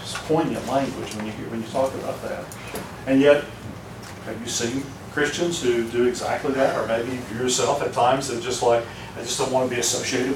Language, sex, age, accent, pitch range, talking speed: English, male, 40-59, American, 115-145 Hz, 195 wpm